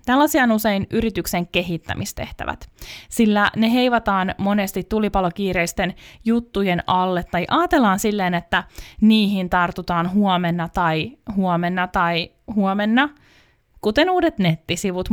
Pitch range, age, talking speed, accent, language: 180-235 Hz, 20-39, 105 wpm, native, Finnish